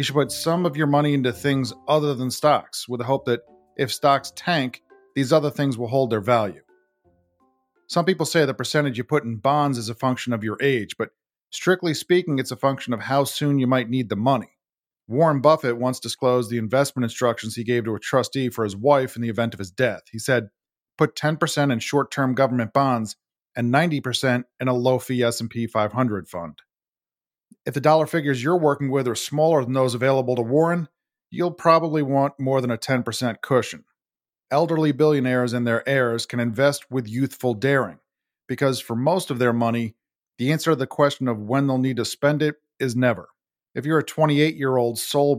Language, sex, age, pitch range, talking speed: English, male, 40-59, 120-145 Hz, 195 wpm